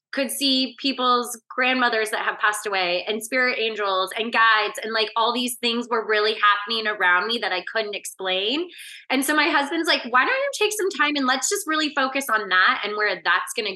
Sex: female